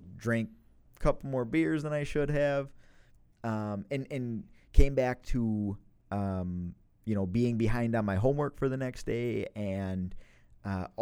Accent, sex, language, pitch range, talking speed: American, male, English, 95-120 Hz, 160 wpm